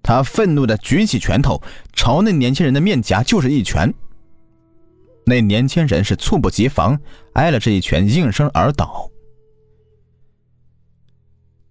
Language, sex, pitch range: Chinese, male, 95-135 Hz